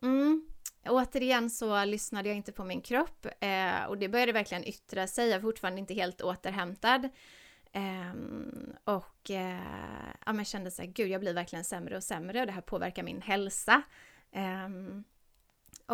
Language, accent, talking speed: Swedish, native, 165 wpm